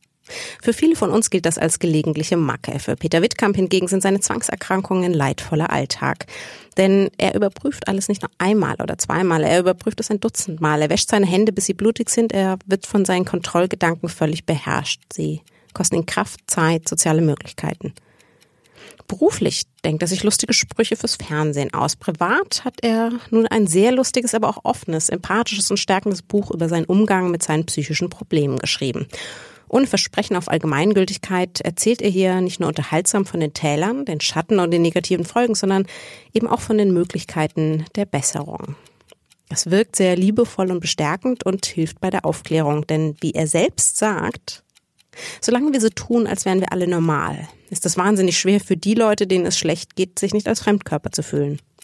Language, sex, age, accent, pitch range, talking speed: German, female, 30-49, German, 160-210 Hz, 180 wpm